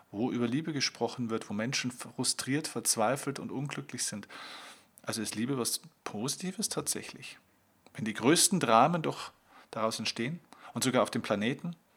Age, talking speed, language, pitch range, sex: 40-59, 150 wpm, German, 115-150 Hz, male